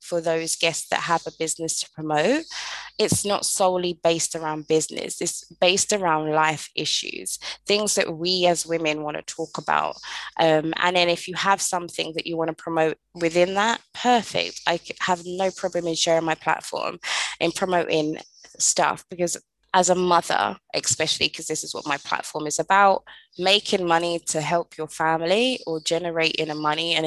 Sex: female